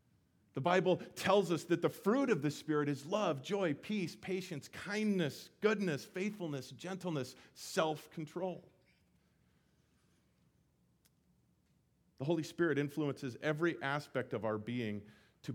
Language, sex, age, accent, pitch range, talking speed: English, male, 40-59, American, 130-180 Hz, 115 wpm